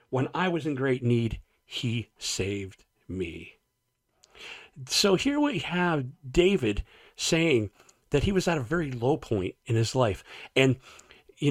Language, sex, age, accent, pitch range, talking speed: English, male, 40-59, American, 120-165 Hz, 145 wpm